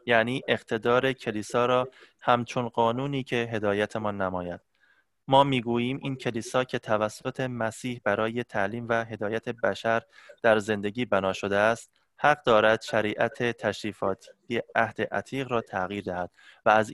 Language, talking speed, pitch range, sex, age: Persian, 135 wpm, 105-125 Hz, male, 20-39